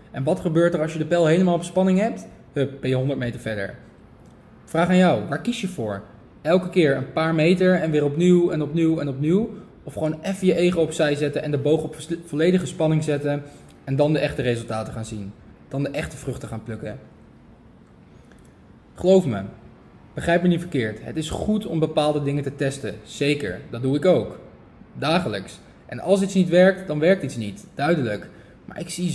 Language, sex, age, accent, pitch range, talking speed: Dutch, male, 20-39, Dutch, 135-170 Hz, 200 wpm